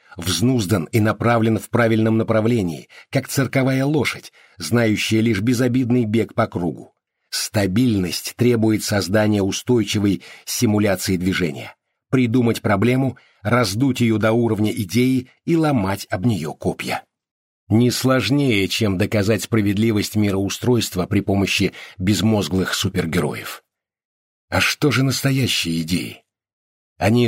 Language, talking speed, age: Russian, 110 wpm, 50-69